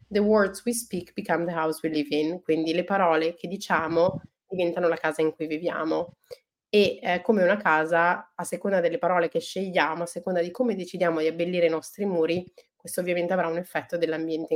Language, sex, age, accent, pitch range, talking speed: Italian, female, 30-49, native, 165-195 Hz, 200 wpm